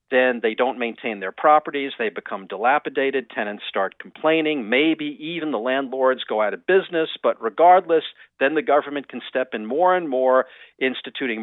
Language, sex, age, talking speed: English, male, 50-69, 170 wpm